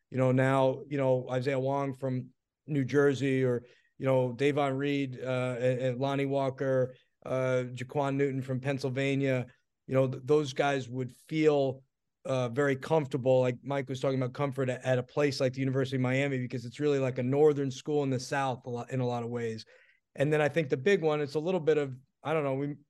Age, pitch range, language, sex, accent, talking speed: 30-49, 125-145 Hz, English, male, American, 205 wpm